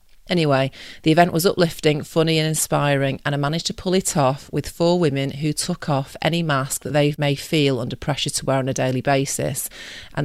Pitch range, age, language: 135-160 Hz, 40-59, English